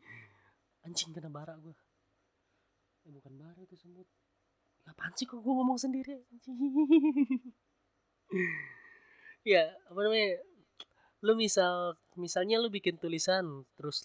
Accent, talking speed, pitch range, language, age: native, 110 wpm, 130-190 Hz, Indonesian, 20-39